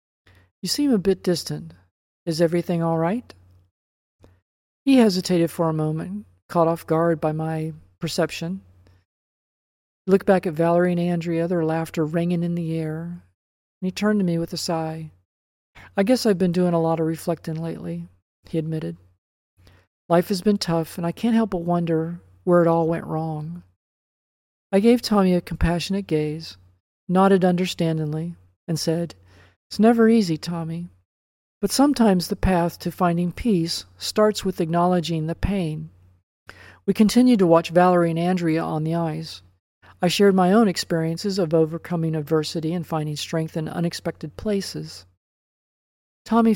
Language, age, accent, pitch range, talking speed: English, 40-59, American, 150-180 Hz, 155 wpm